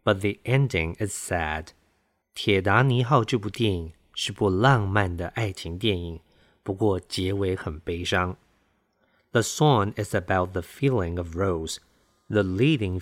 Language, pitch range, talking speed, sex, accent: English, 90-120 Hz, 70 wpm, male, Chinese